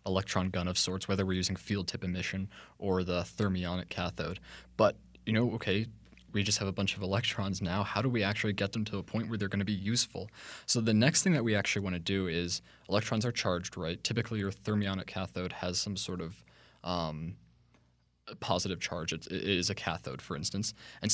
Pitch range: 95-110 Hz